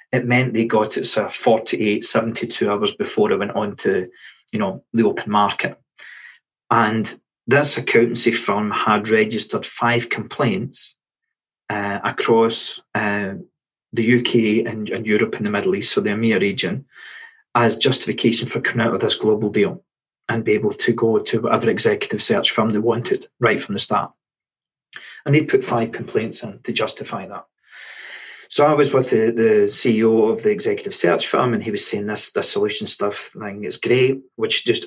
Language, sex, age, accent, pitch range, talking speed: English, male, 40-59, British, 115-185 Hz, 175 wpm